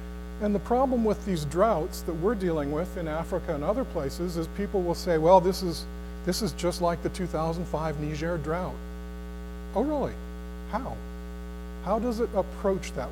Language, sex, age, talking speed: English, male, 50-69, 175 wpm